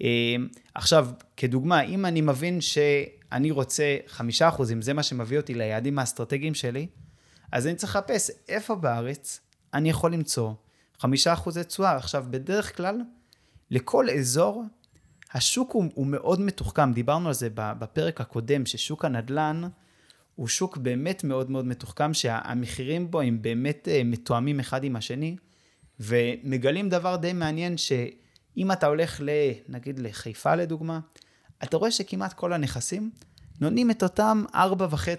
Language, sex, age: Hebrew, male, 20-39